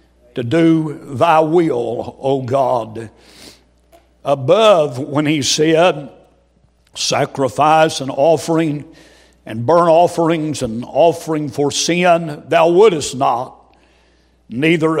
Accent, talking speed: American, 95 wpm